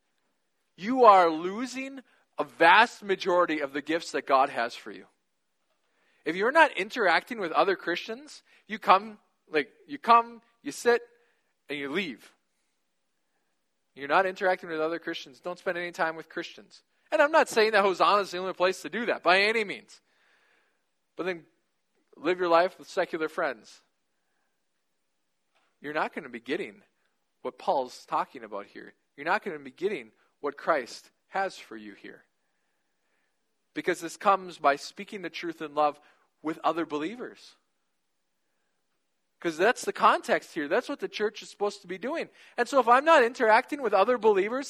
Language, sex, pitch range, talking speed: English, male, 170-270 Hz, 170 wpm